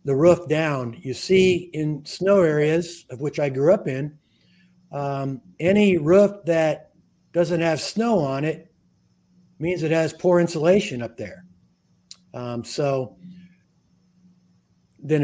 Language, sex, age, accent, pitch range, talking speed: English, male, 50-69, American, 140-175 Hz, 130 wpm